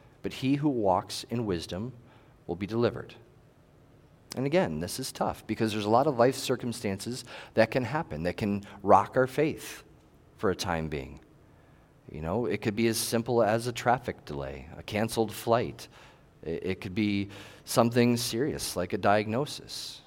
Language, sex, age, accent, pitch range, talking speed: English, male, 40-59, American, 100-125 Hz, 165 wpm